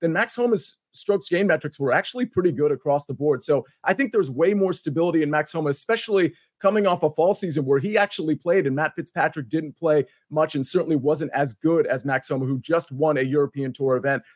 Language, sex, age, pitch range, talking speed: English, male, 30-49, 150-195 Hz, 225 wpm